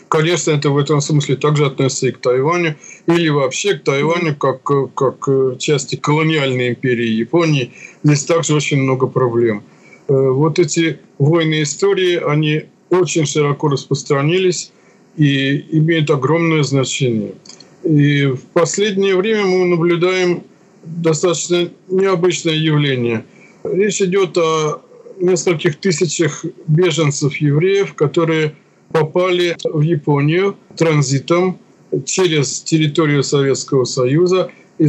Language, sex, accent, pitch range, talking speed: Russian, male, native, 140-170 Hz, 105 wpm